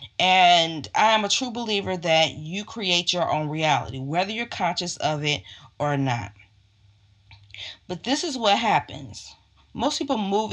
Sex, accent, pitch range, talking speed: female, American, 135-185 Hz, 155 wpm